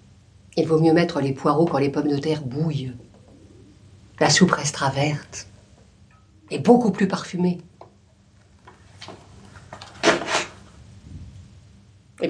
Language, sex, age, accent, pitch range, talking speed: French, female, 50-69, French, 105-170 Hz, 100 wpm